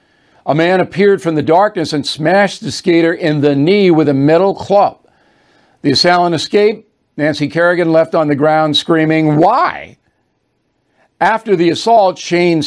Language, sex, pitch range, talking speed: English, male, 155-195 Hz, 150 wpm